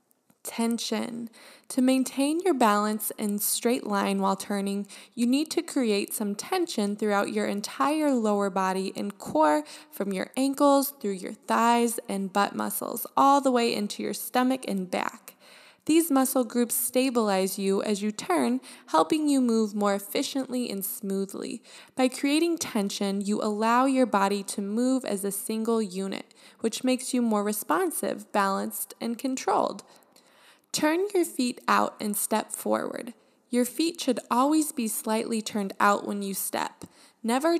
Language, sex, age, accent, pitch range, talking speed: English, female, 20-39, American, 205-265 Hz, 150 wpm